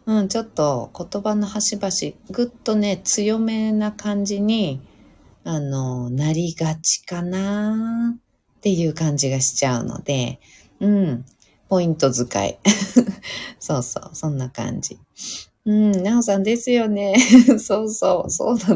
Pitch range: 140-220 Hz